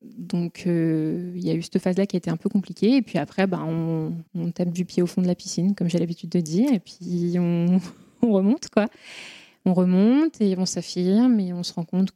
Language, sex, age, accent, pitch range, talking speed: French, female, 20-39, French, 180-210 Hz, 240 wpm